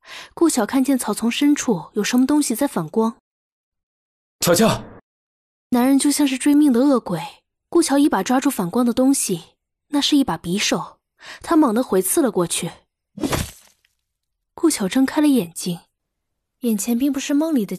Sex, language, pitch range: female, Chinese, 195-285 Hz